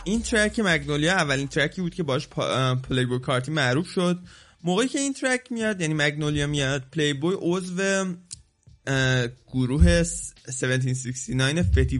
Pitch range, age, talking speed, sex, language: 130-160 Hz, 20-39, 145 wpm, male, Persian